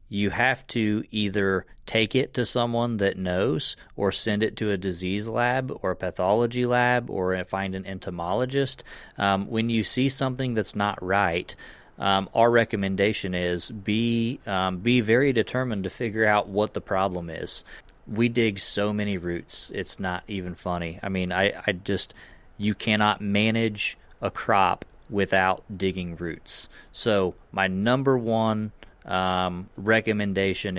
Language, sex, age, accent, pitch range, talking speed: English, male, 30-49, American, 95-110 Hz, 150 wpm